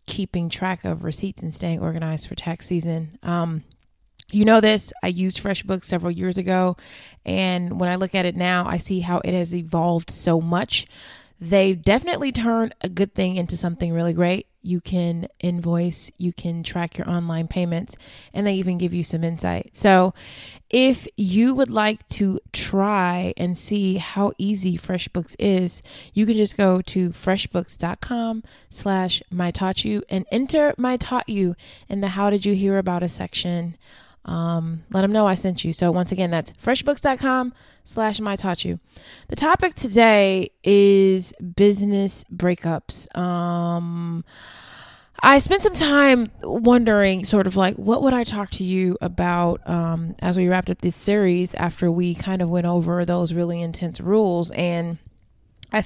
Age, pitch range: 20-39, 175-205 Hz